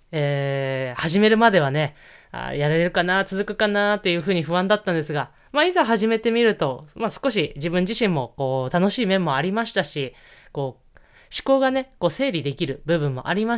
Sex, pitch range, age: female, 145-220 Hz, 20-39